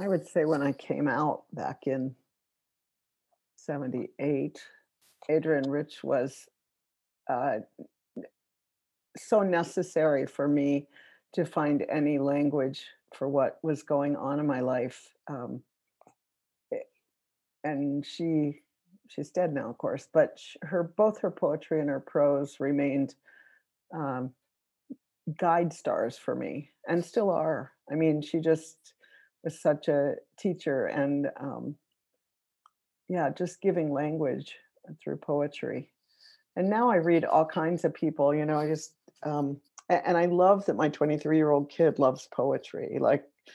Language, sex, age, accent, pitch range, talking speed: English, female, 50-69, American, 145-170 Hz, 130 wpm